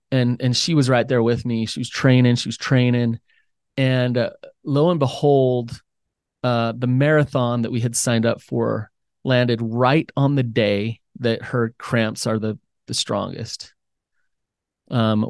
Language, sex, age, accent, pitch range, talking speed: English, male, 30-49, American, 115-130 Hz, 160 wpm